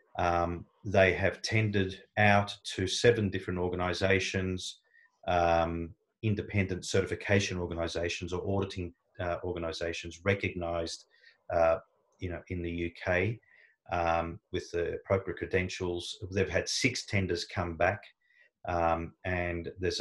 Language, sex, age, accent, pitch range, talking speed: English, male, 30-49, Australian, 85-100 Hz, 115 wpm